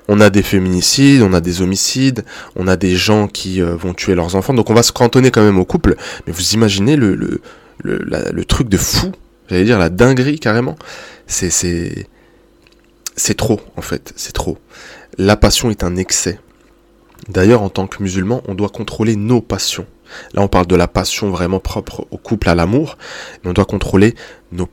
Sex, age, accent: male, 20-39, French